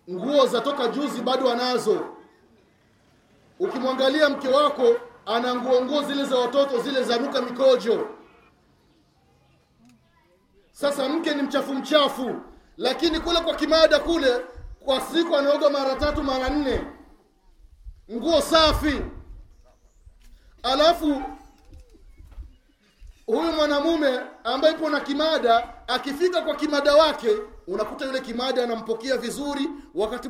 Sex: male